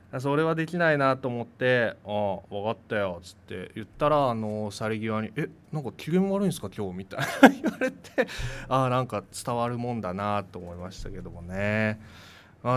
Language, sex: Japanese, male